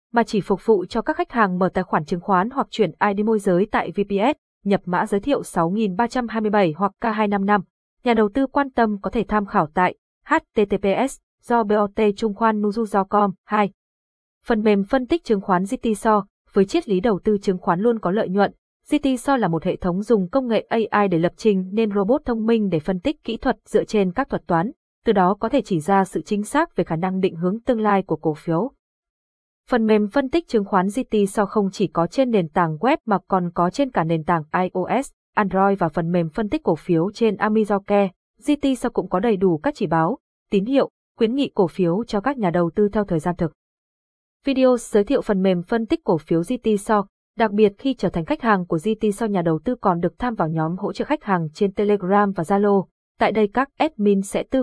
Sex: female